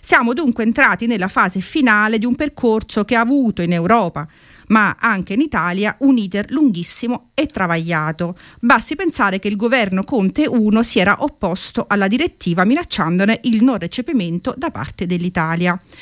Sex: female